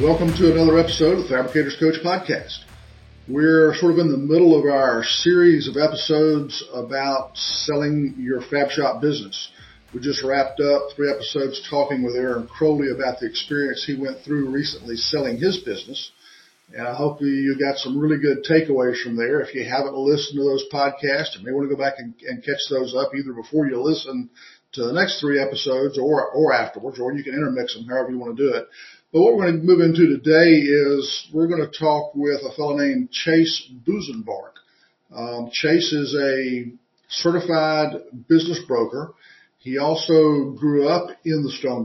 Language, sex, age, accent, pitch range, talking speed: English, male, 50-69, American, 130-155 Hz, 185 wpm